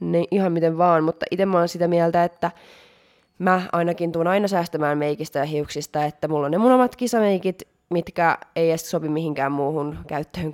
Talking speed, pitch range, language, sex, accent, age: 190 wpm, 150-170 Hz, Finnish, female, native, 20-39